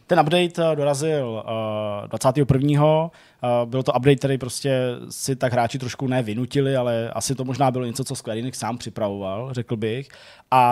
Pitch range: 125-145 Hz